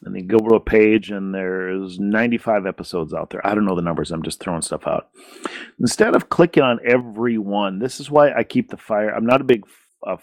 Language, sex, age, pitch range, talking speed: English, male, 40-59, 105-125 Hz, 240 wpm